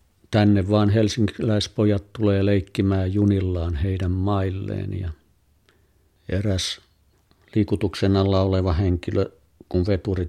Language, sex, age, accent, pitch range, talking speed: Finnish, male, 50-69, native, 85-100 Hz, 95 wpm